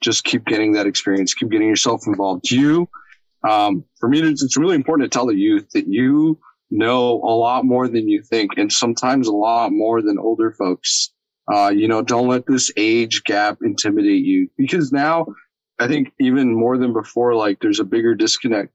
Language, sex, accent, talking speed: English, male, American, 195 wpm